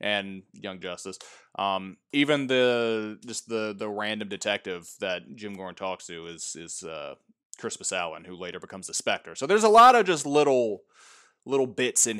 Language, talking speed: English, 175 wpm